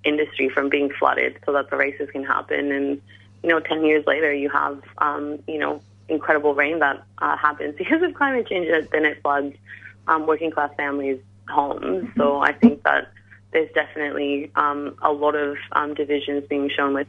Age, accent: 20-39, American